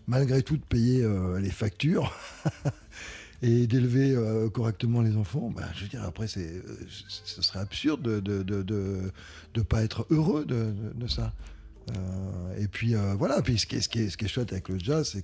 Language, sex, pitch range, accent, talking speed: French, male, 95-125 Hz, French, 220 wpm